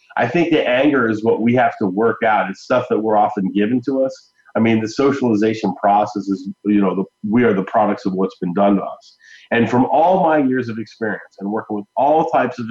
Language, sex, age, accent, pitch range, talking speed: English, male, 30-49, American, 100-125 Hz, 235 wpm